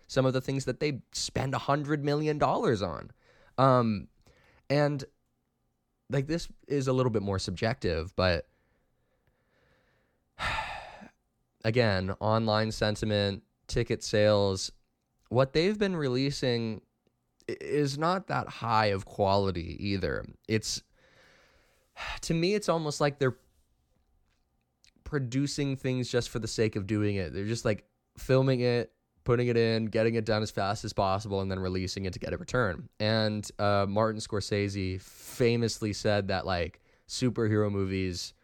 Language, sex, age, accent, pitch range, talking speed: English, male, 20-39, American, 95-125 Hz, 135 wpm